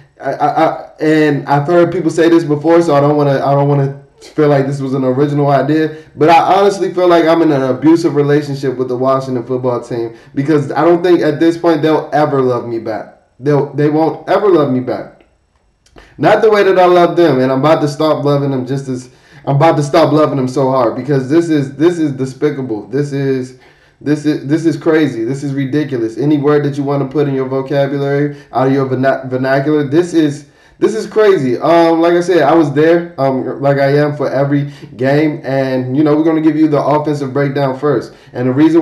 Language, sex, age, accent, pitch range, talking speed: English, male, 20-39, American, 135-155 Hz, 230 wpm